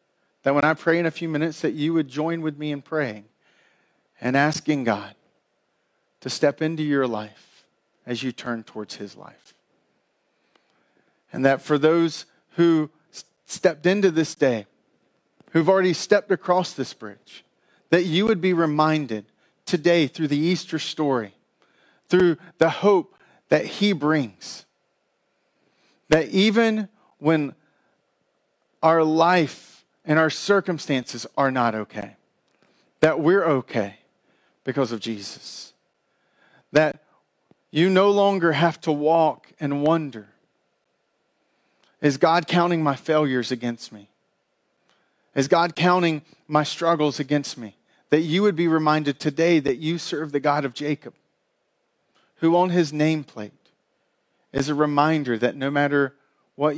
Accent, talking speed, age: American, 130 wpm, 40-59